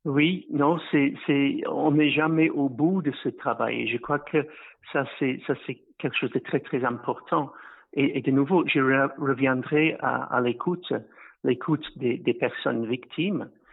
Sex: male